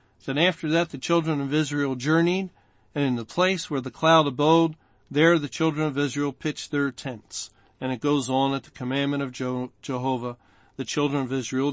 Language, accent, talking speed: English, American, 190 wpm